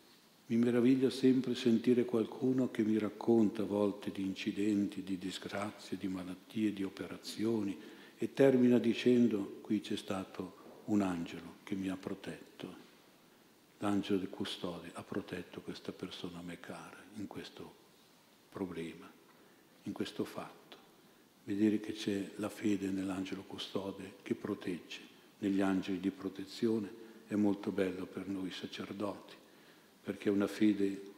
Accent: native